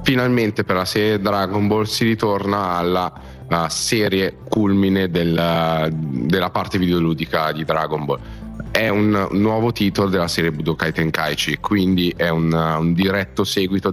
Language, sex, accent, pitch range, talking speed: Italian, male, native, 80-95 Hz, 145 wpm